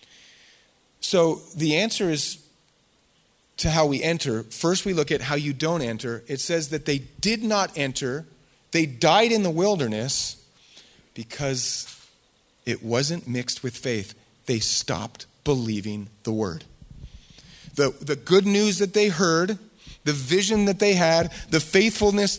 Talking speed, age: 140 wpm, 30-49